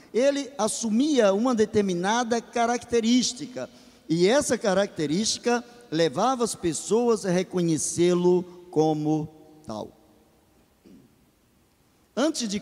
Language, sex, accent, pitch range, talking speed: Portuguese, male, Brazilian, 160-225 Hz, 80 wpm